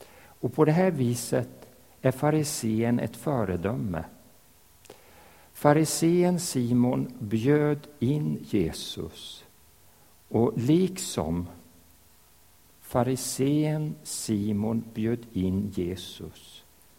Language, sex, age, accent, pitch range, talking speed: Swedish, male, 60-79, Norwegian, 90-140 Hz, 75 wpm